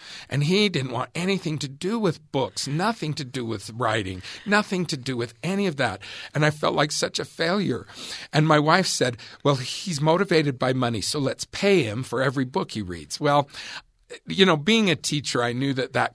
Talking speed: 210 wpm